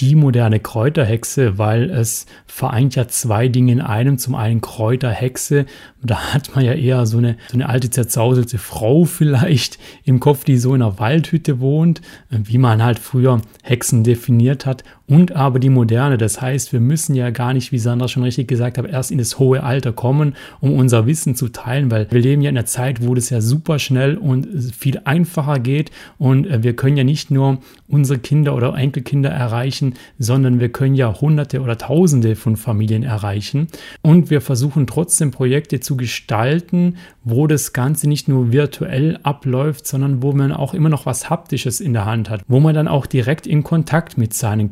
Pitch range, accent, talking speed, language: 120-145 Hz, German, 190 wpm, German